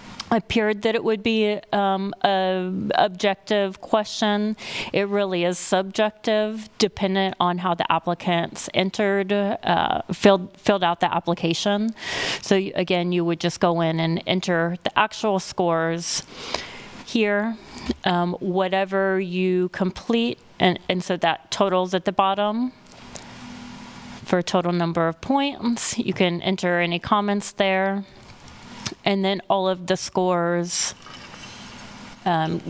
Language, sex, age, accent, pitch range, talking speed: English, female, 30-49, American, 175-205 Hz, 125 wpm